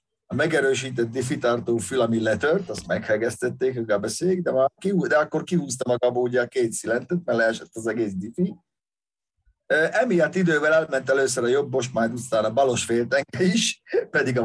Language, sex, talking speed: Hungarian, male, 155 wpm